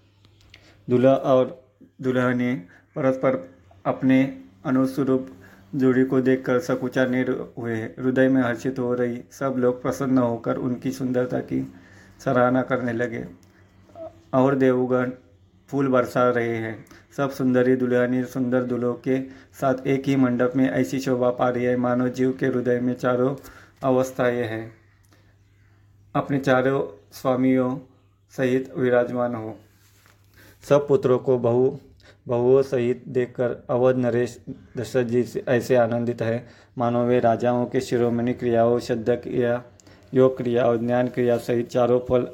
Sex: male